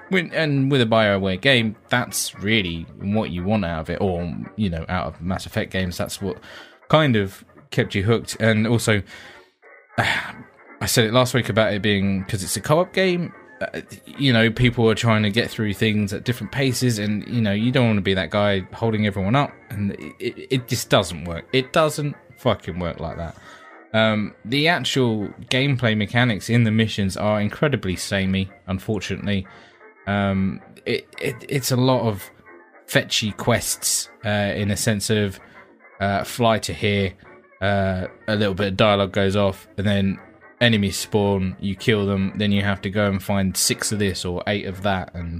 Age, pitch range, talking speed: 20-39, 95-115 Hz, 180 wpm